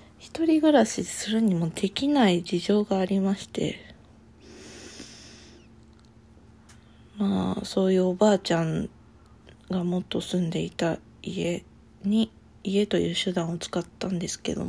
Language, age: Japanese, 20-39